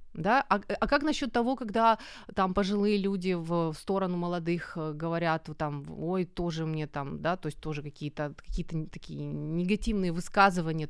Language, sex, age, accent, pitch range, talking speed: Ukrainian, female, 20-39, native, 165-225 Hz, 165 wpm